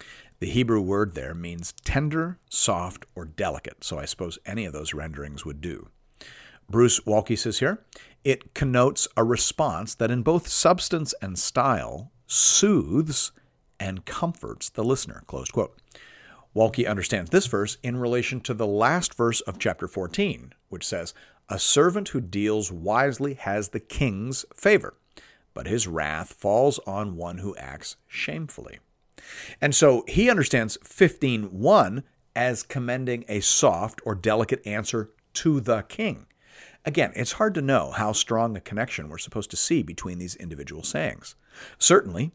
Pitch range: 100-140 Hz